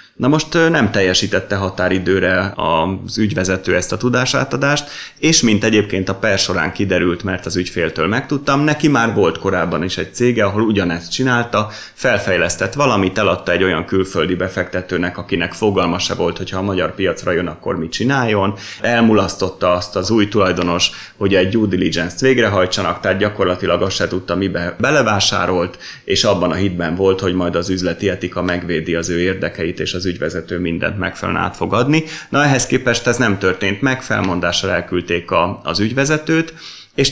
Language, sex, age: Hungarian, male, 30-49